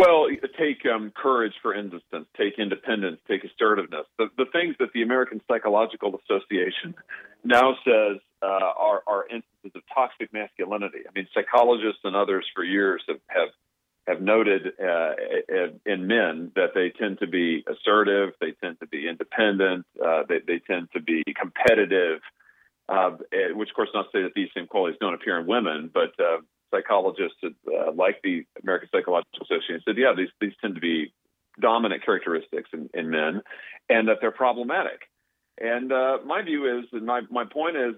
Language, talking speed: English, 170 wpm